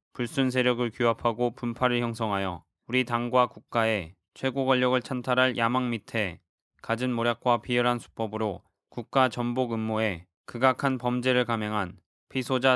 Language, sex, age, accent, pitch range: Korean, male, 20-39, native, 110-125 Hz